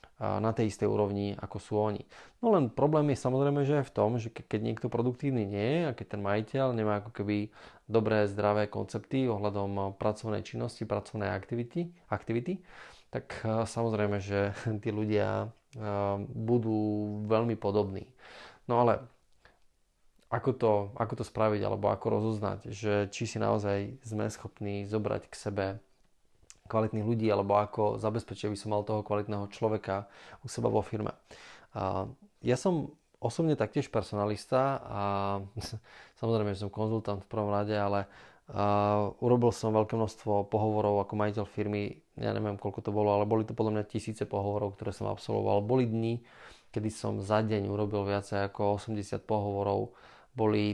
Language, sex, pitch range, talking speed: Slovak, male, 100-115 Hz, 150 wpm